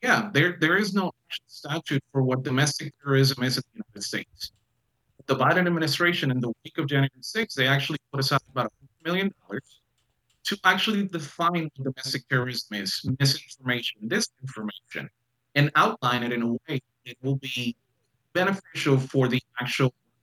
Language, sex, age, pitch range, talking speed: English, male, 30-49, 125-155 Hz, 160 wpm